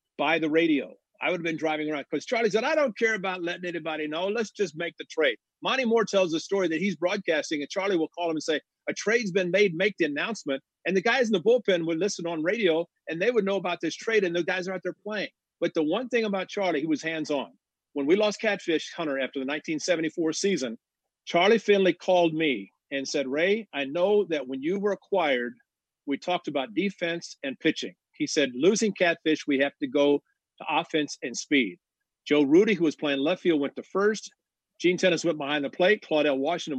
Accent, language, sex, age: American, English, male, 50-69